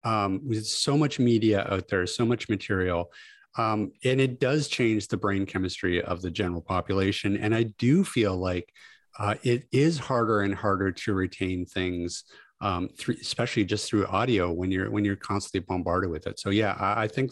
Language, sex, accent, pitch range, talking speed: English, male, American, 90-110 Hz, 185 wpm